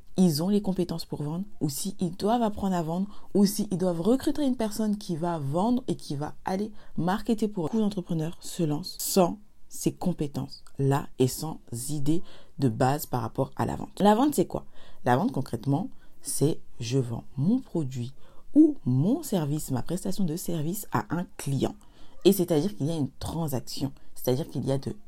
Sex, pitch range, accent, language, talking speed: female, 140-195 Hz, French, French, 190 wpm